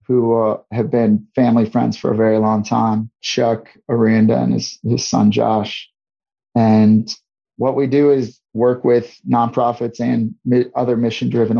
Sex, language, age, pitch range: male, English, 30-49, 110-120 Hz